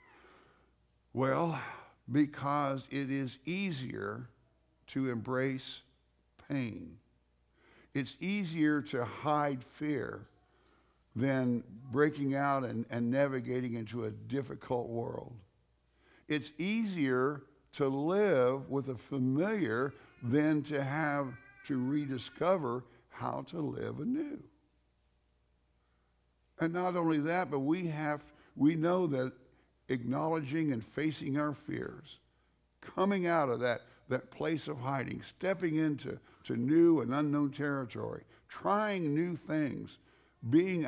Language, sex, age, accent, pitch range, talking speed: English, male, 60-79, American, 115-150 Hz, 105 wpm